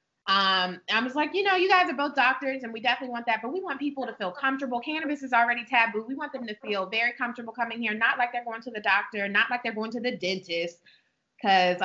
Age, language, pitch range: 20-39, English, 205-250 Hz